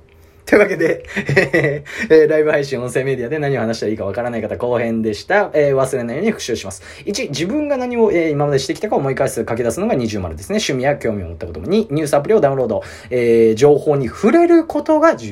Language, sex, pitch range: Japanese, male, 100-160 Hz